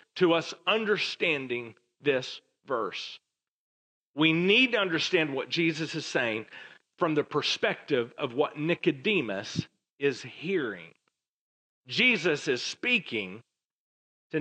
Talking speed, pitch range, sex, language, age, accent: 105 wpm, 155-220 Hz, male, English, 40-59, American